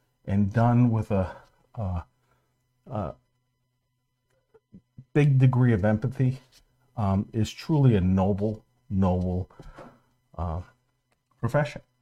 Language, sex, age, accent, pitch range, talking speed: English, male, 50-69, American, 100-125 Hz, 90 wpm